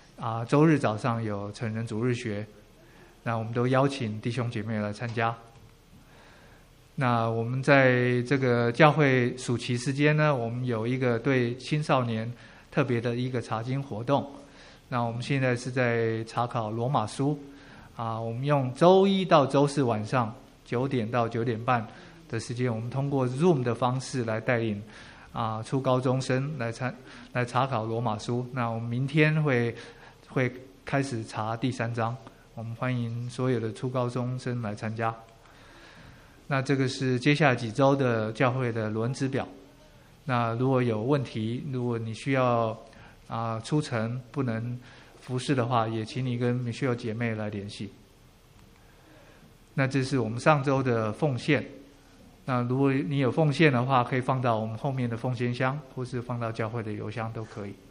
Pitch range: 115-135 Hz